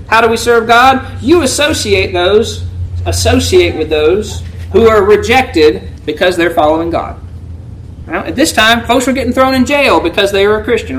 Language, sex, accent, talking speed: English, male, American, 180 wpm